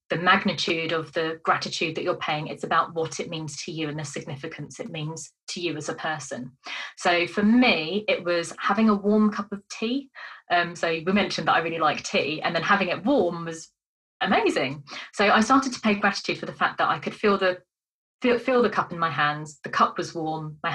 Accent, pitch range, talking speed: British, 165-210 Hz, 225 wpm